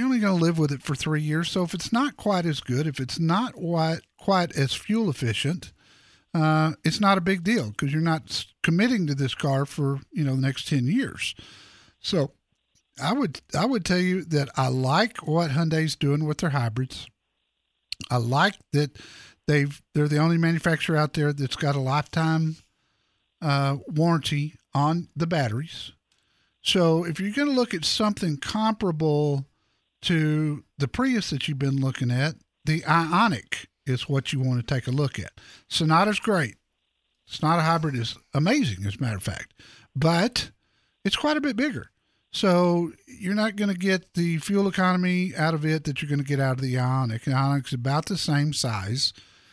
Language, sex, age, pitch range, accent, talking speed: English, male, 50-69, 130-175 Hz, American, 185 wpm